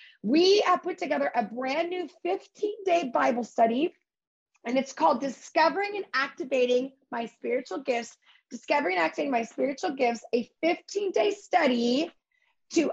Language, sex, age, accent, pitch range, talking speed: English, female, 30-49, American, 245-325 Hz, 145 wpm